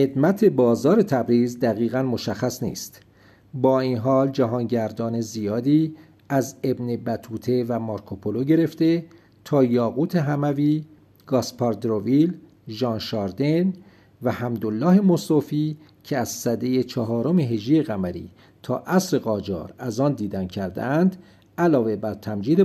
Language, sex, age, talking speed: Persian, male, 50-69, 110 wpm